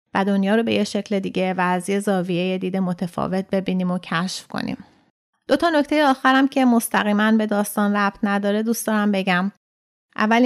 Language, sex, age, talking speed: Persian, female, 30-49, 180 wpm